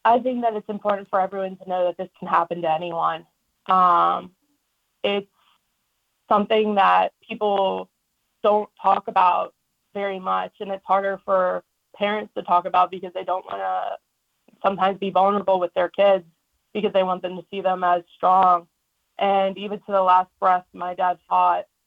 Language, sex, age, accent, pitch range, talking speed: English, female, 20-39, American, 185-205 Hz, 170 wpm